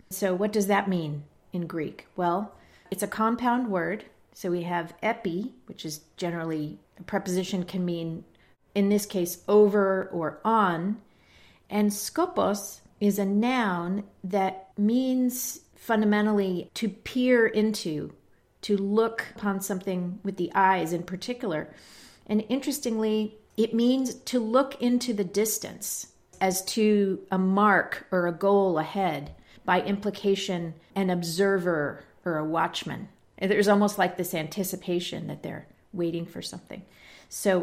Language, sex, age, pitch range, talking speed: English, female, 40-59, 180-220 Hz, 135 wpm